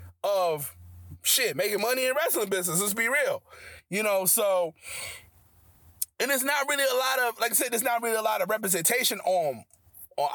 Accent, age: American, 30-49